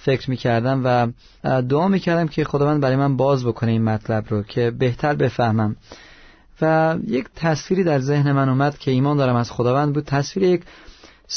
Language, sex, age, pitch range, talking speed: Persian, male, 30-49, 130-165 Hz, 170 wpm